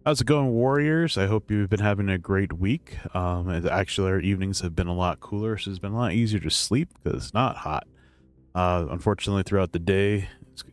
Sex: male